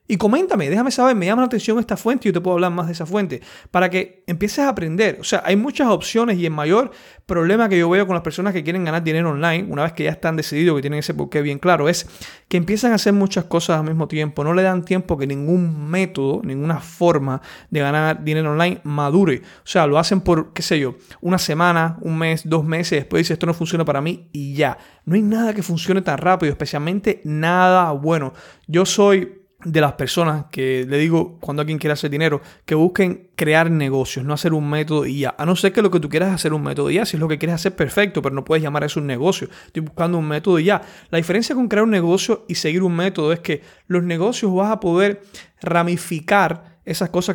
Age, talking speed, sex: 30-49, 240 wpm, male